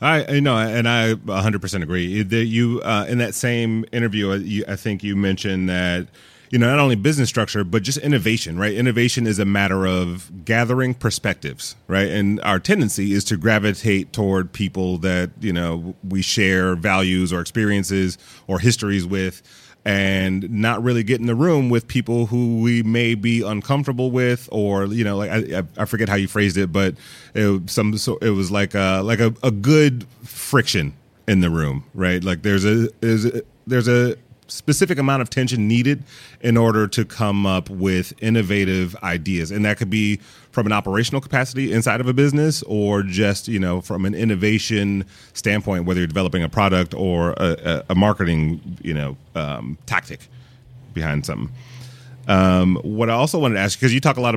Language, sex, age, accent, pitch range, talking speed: English, male, 30-49, American, 95-120 Hz, 185 wpm